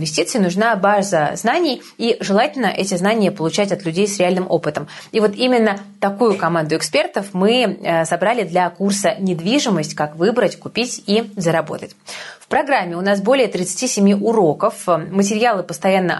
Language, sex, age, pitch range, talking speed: Russian, female, 20-39, 170-220 Hz, 140 wpm